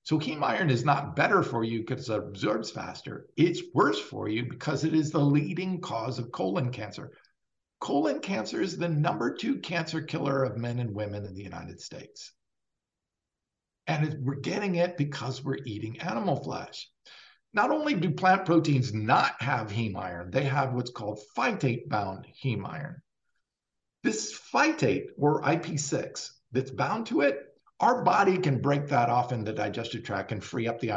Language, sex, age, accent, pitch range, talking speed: English, male, 50-69, American, 120-185 Hz, 170 wpm